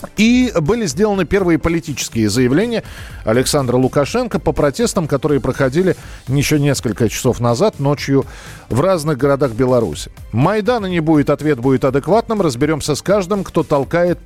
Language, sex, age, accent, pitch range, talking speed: Russian, male, 40-59, native, 130-175 Hz, 135 wpm